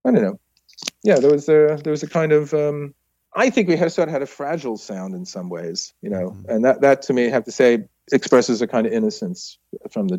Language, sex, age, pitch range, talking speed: English, male, 40-59, 115-180 Hz, 260 wpm